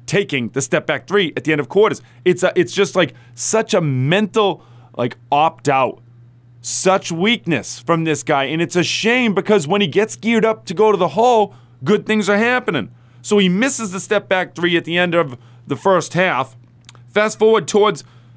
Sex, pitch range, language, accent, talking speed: male, 135-205 Hz, English, American, 195 wpm